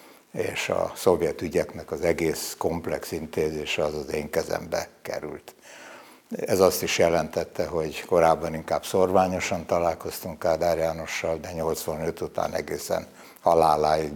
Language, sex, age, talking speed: Hungarian, male, 60-79, 125 wpm